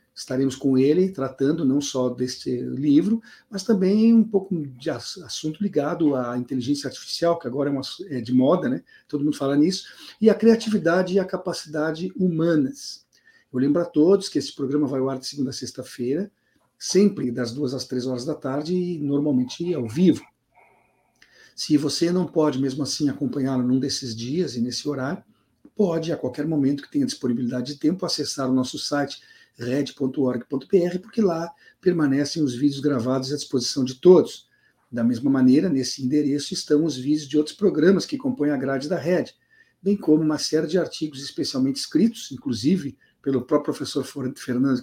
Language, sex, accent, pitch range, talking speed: Portuguese, male, Brazilian, 135-180 Hz, 175 wpm